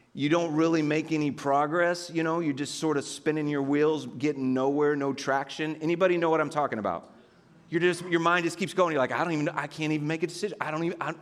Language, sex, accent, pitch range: English, male, American, 135-175 Hz